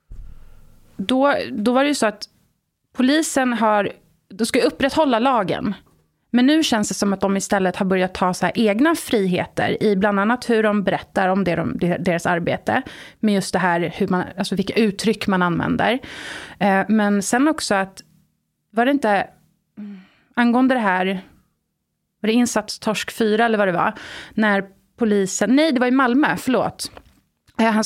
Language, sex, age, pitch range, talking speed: Swedish, female, 30-49, 195-245 Hz, 165 wpm